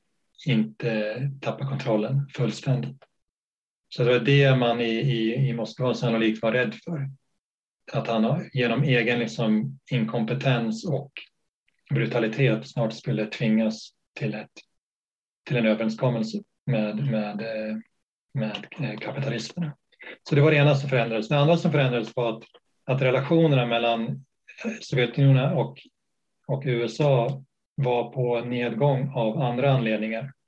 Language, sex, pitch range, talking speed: Swedish, male, 110-135 Hz, 125 wpm